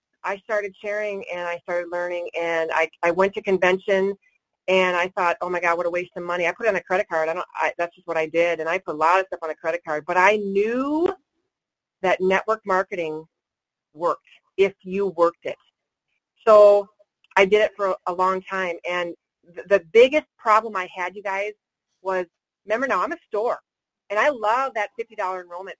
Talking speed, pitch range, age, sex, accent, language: 210 wpm, 175-215 Hz, 40-59, female, American, English